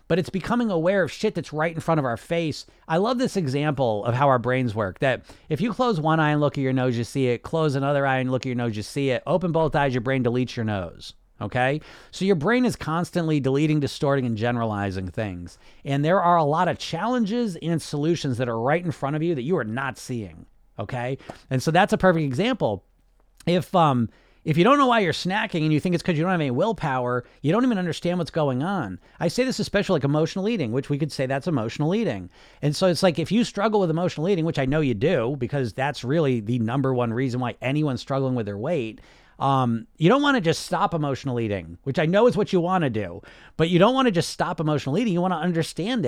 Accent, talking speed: American, 250 wpm